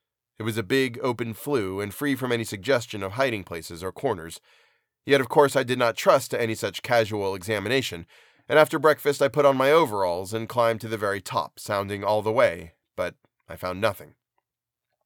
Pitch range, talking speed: 105-140 Hz, 200 wpm